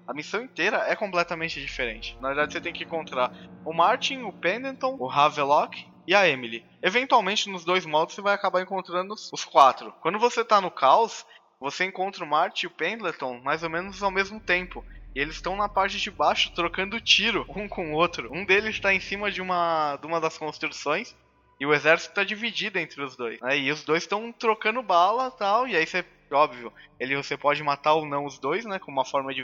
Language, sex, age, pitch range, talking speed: Portuguese, male, 10-29, 140-195 Hz, 215 wpm